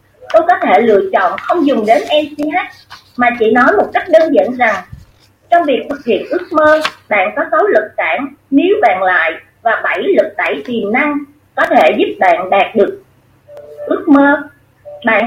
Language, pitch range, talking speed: Vietnamese, 245-335 Hz, 180 wpm